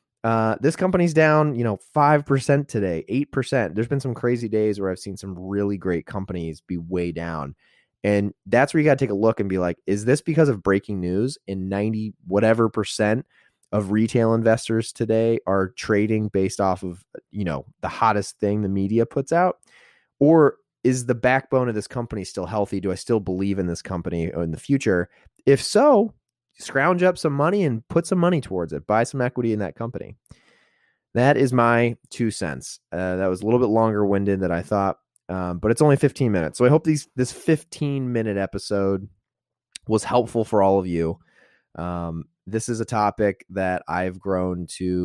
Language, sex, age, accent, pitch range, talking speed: English, male, 20-39, American, 95-125 Hz, 195 wpm